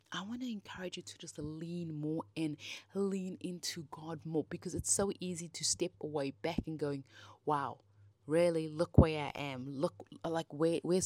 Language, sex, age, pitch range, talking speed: English, female, 20-39, 150-190 Hz, 180 wpm